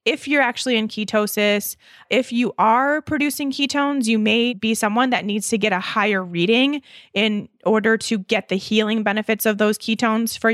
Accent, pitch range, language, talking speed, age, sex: American, 195-230 Hz, English, 180 wpm, 20-39, female